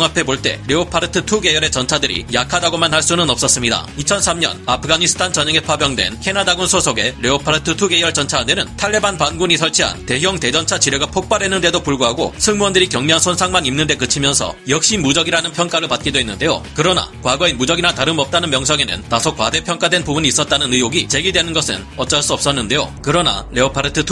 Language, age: Korean, 40-59